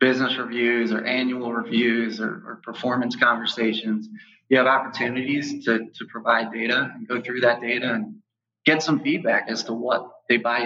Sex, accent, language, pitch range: male, American, English, 115-130 Hz